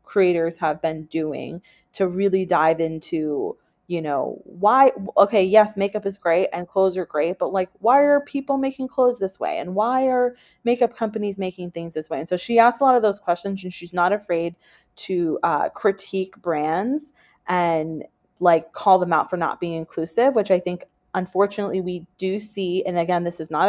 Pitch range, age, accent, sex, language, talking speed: 165-195 Hz, 20-39, American, female, English, 195 wpm